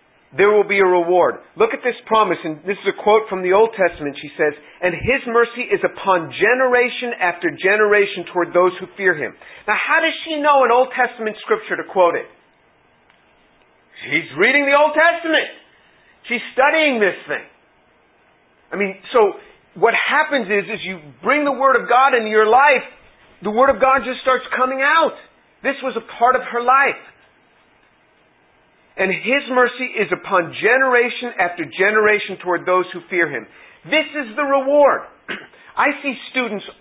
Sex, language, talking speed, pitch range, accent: male, English, 170 wpm, 185-265 Hz, American